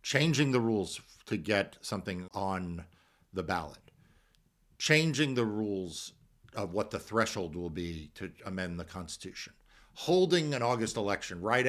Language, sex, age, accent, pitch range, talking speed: English, male, 50-69, American, 105-145 Hz, 140 wpm